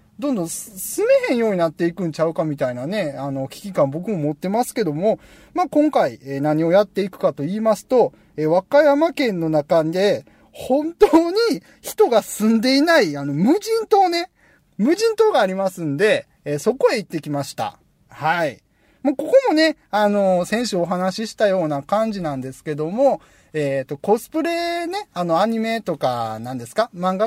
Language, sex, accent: Japanese, male, native